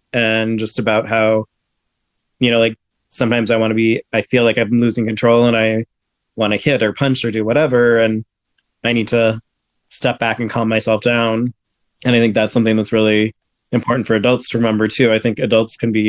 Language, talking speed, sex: English, 215 wpm, male